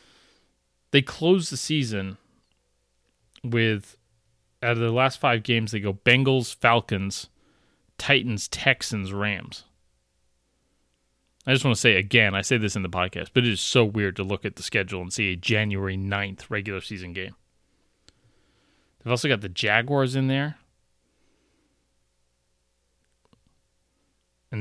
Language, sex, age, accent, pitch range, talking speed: English, male, 30-49, American, 95-135 Hz, 135 wpm